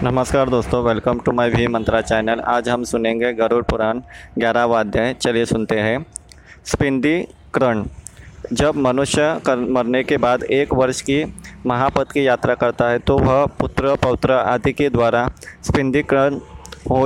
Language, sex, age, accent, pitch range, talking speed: Hindi, male, 20-39, native, 120-140 Hz, 145 wpm